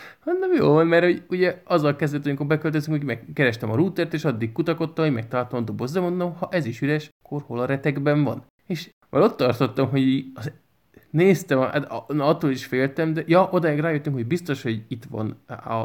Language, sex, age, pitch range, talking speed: Hungarian, male, 20-39, 115-150 Hz, 190 wpm